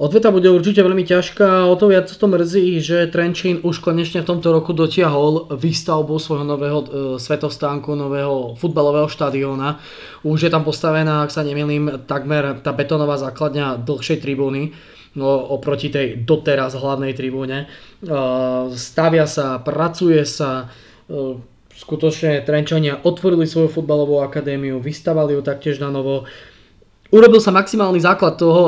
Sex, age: male, 20-39